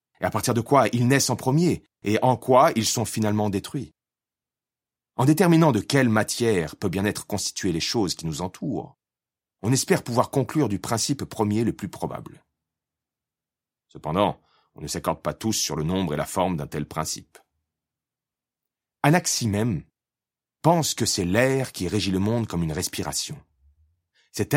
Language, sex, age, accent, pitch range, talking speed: French, male, 40-59, French, 105-150 Hz, 170 wpm